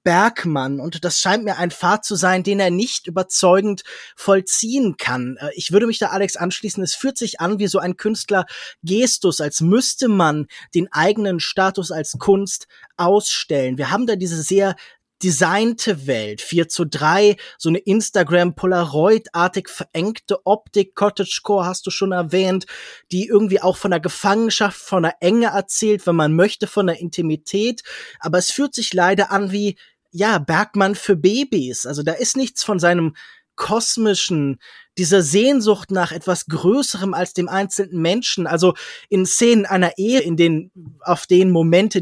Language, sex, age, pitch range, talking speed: German, male, 20-39, 170-205 Hz, 160 wpm